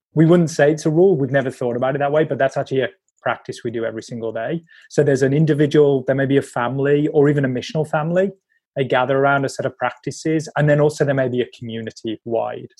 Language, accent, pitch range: English, British, 130-155 Hz